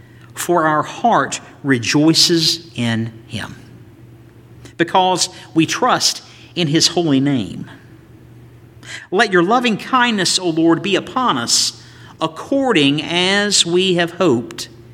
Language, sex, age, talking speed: English, male, 50-69, 110 wpm